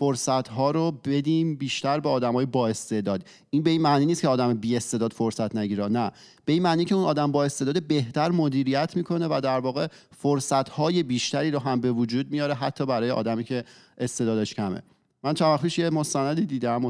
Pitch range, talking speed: 120-150 Hz, 190 wpm